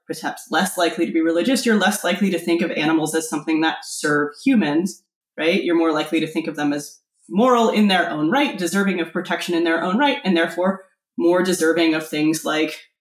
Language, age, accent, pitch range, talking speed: English, 20-39, American, 165-210 Hz, 210 wpm